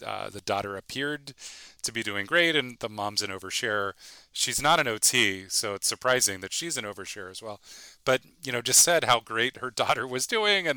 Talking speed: 210 wpm